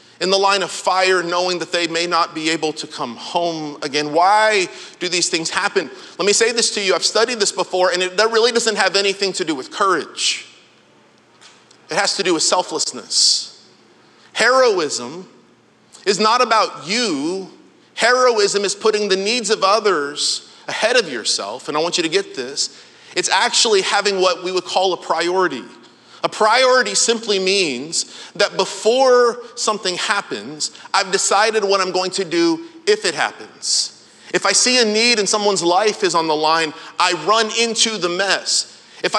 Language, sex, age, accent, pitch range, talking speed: English, male, 40-59, American, 185-250 Hz, 175 wpm